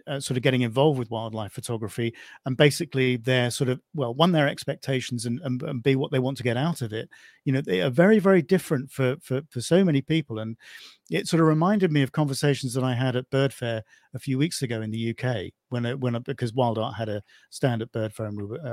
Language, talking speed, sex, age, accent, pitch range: English, 255 wpm, male, 40-59, British, 115-140 Hz